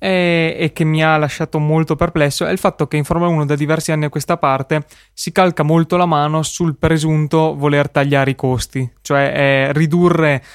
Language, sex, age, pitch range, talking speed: Italian, male, 20-39, 140-160 Hz, 195 wpm